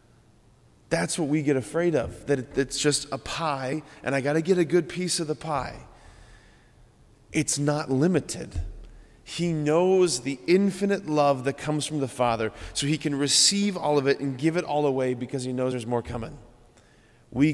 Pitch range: 125-160 Hz